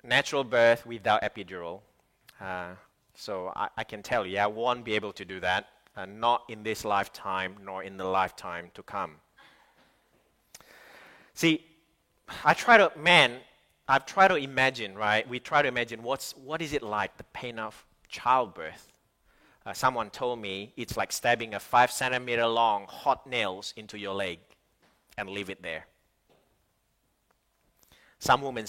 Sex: male